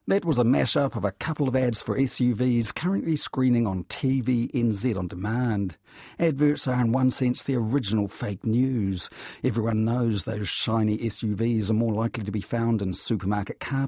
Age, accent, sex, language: 50-69, British, male, English